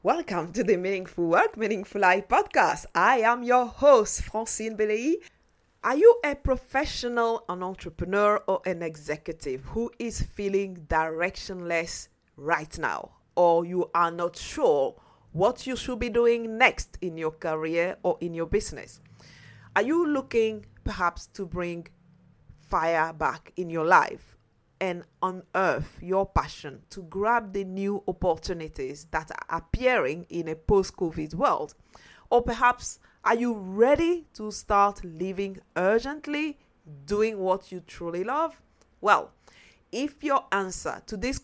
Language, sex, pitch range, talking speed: English, female, 175-235 Hz, 135 wpm